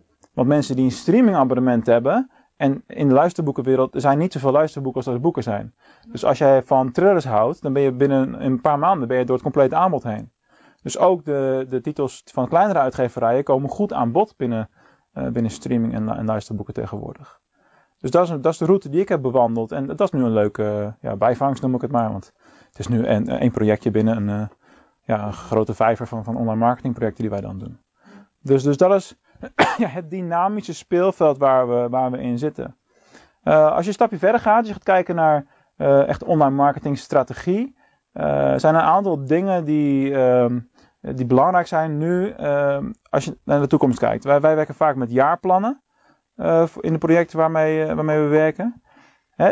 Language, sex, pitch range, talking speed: Dutch, male, 125-170 Hz, 205 wpm